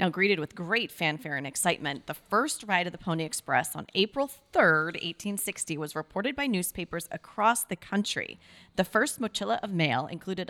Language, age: English, 30-49